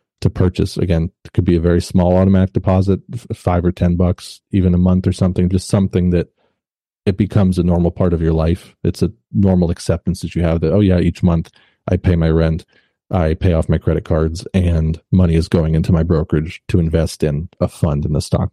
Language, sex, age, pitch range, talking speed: English, male, 30-49, 85-95 Hz, 220 wpm